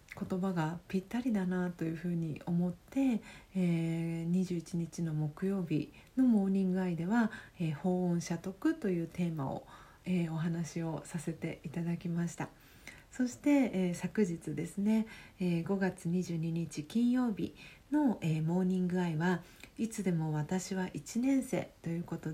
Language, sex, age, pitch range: Japanese, female, 40-59, 165-195 Hz